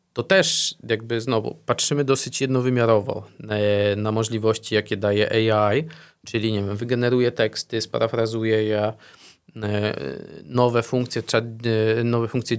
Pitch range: 110-130 Hz